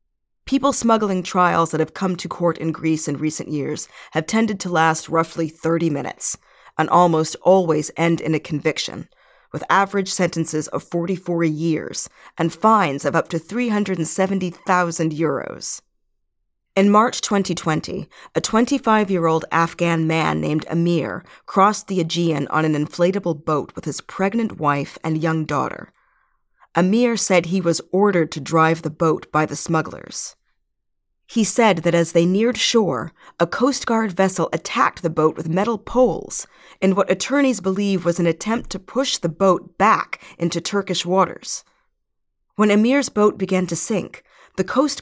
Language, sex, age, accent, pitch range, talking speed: English, female, 40-59, American, 160-205 Hz, 155 wpm